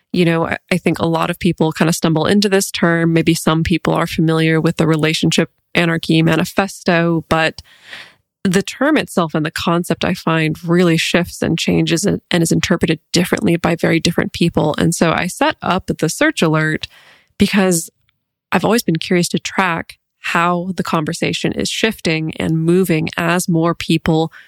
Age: 20-39